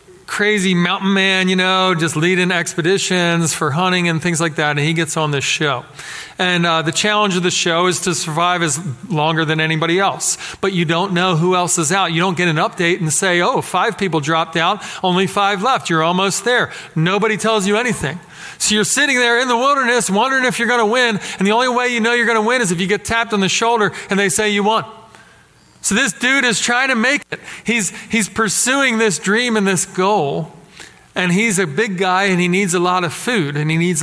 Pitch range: 160-205 Hz